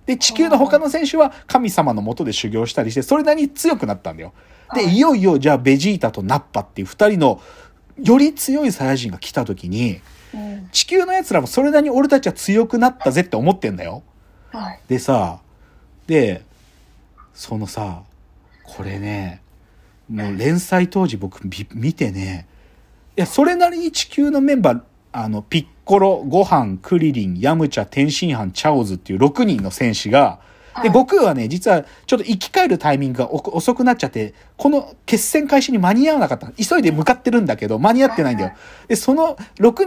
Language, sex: Japanese, male